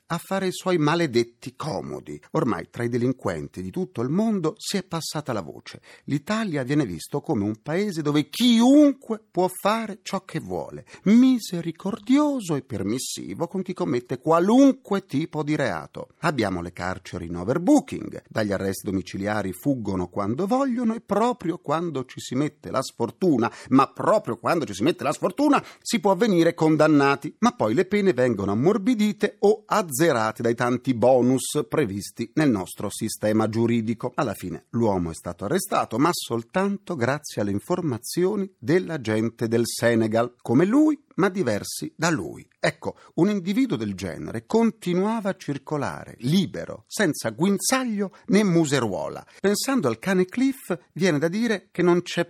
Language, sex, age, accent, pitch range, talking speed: Italian, male, 40-59, native, 115-195 Hz, 155 wpm